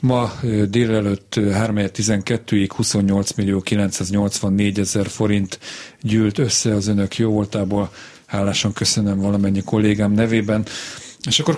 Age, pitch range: 40-59, 105-125 Hz